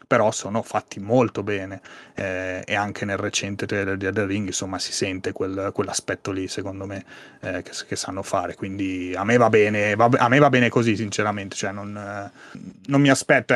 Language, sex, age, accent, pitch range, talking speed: Italian, male, 30-49, native, 100-115 Hz, 205 wpm